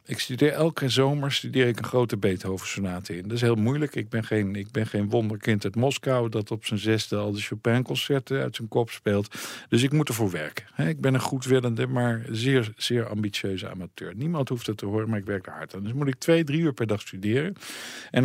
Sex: male